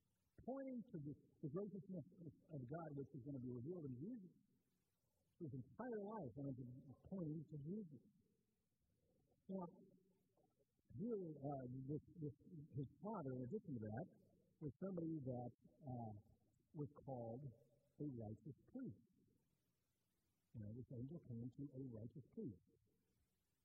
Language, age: English, 60-79